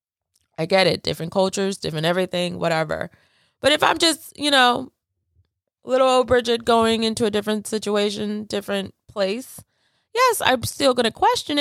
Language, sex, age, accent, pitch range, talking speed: English, female, 20-39, American, 160-235 Hz, 150 wpm